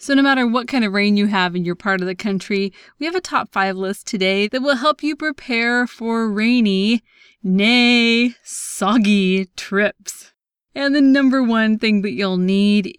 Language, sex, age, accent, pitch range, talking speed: English, female, 20-39, American, 195-255 Hz, 185 wpm